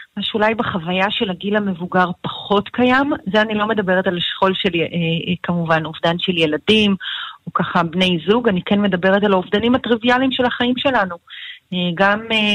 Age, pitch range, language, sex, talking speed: 40-59, 175-215 Hz, Hebrew, female, 160 wpm